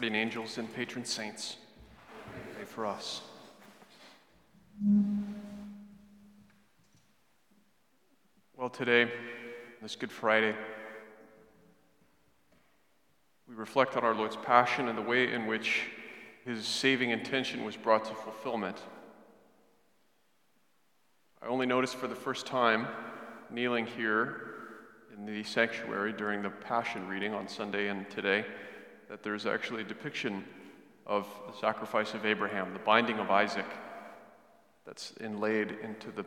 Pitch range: 110-130 Hz